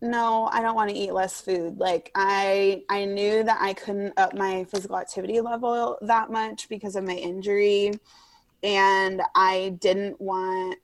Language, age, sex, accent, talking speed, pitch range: English, 20-39, female, American, 165 wpm, 185-220 Hz